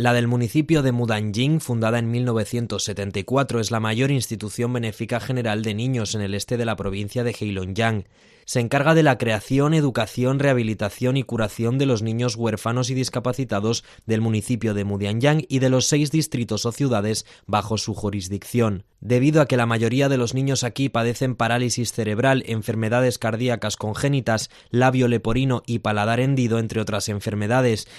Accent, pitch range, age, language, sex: Spanish, 105-125 Hz, 20-39, Chinese, male